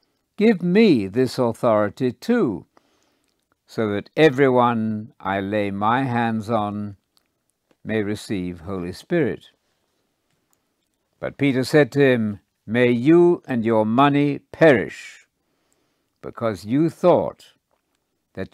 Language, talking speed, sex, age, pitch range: English, 105 wpm, male, 60-79, 105-150 Hz